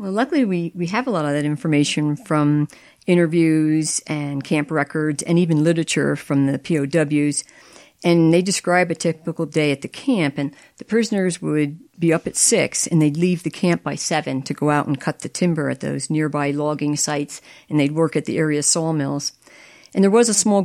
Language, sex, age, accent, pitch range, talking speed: English, female, 50-69, American, 150-180 Hz, 200 wpm